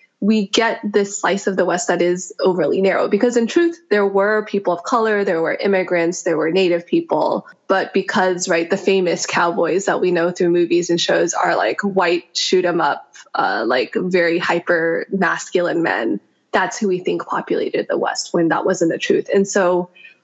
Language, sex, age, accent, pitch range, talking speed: English, female, 20-39, American, 180-215 Hz, 195 wpm